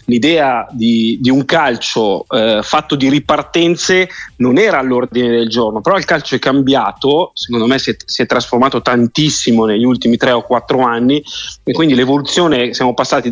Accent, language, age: native, Italian, 30-49